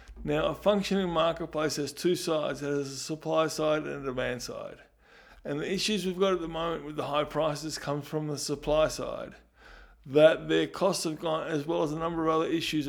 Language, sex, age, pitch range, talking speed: English, male, 20-39, 150-180 Hz, 215 wpm